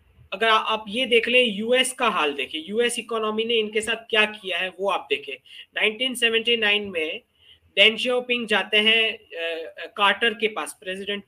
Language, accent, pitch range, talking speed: English, Indian, 200-240 Hz, 165 wpm